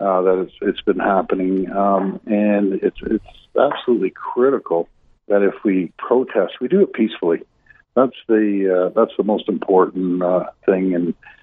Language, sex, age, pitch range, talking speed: English, male, 60-79, 95-115 Hz, 155 wpm